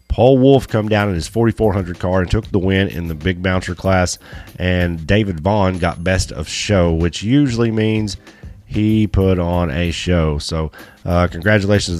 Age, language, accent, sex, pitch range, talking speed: 30-49, English, American, male, 90-105 Hz, 180 wpm